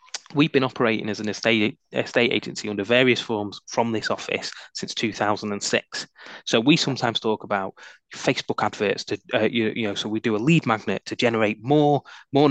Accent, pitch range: British, 115-145 Hz